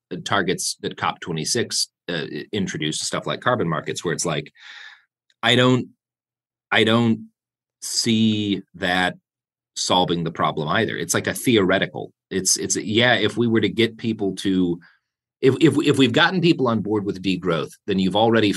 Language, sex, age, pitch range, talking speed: English, male, 30-49, 85-115 Hz, 165 wpm